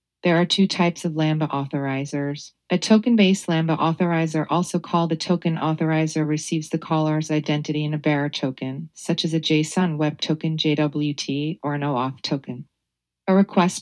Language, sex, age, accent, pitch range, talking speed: English, female, 40-59, American, 145-165 Hz, 160 wpm